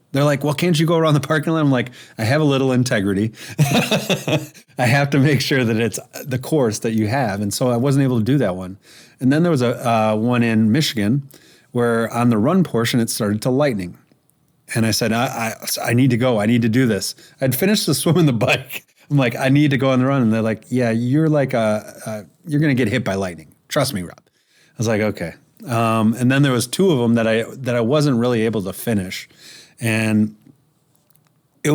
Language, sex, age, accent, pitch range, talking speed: English, male, 30-49, American, 110-140 Hz, 240 wpm